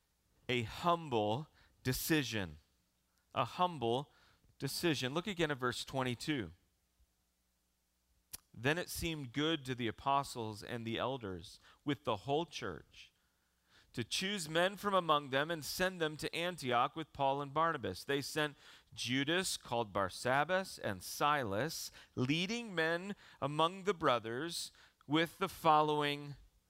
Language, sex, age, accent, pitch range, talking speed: English, male, 40-59, American, 120-170 Hz, 125 wpm